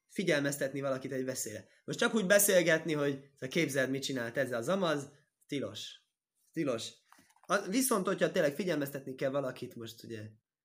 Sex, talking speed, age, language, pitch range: male, 150 wpm, 20-39, Hungarian, 135-190 Hz